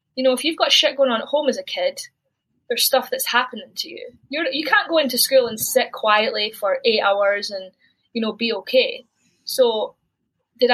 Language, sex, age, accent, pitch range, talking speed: English, female, 20-39, British, 205-270 Hz, 205 wpm